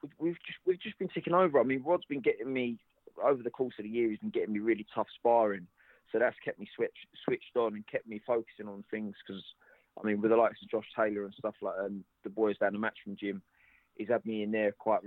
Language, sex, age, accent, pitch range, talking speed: English, male, 20-39, British, 105-125 Hz, 265 wpm